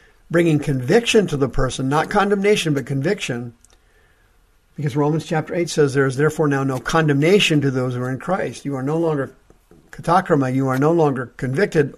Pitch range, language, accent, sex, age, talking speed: 120-165 Hz, English, American, male, 50-69, 180 wpm